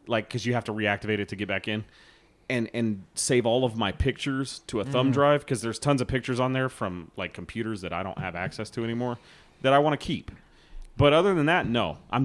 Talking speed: 245 wpm